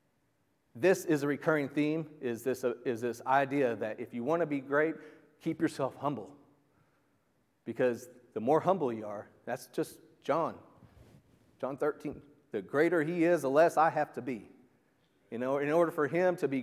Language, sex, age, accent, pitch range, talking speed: English, male, 40-59, American, 125-155 Hz, 175 wpm